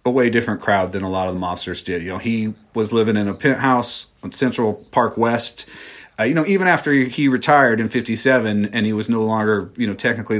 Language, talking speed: English, 230 wpm